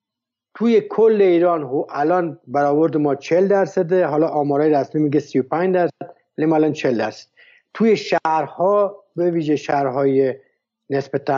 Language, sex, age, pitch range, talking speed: Persian, male, 60-79, 145-195 Hz, 130 wpm